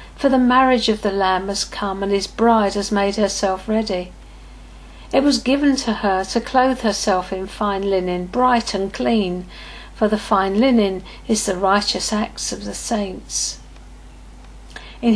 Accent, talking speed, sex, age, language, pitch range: British, 160 wpm, female, 50-69, English, 200-240 Hz